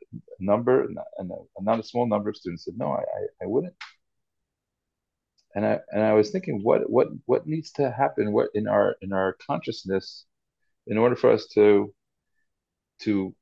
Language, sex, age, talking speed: English, male, 40-59, 170 wpm